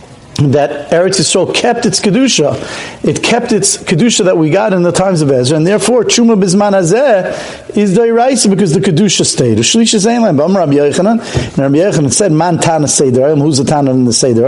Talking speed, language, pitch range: 185 wpm, English, 140-205 Hz